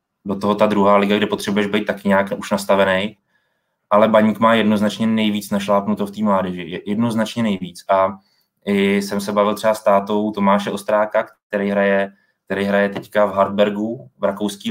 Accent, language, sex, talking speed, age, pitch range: native, Czech, male, 170 wpm, 20-39, 100-110 Hz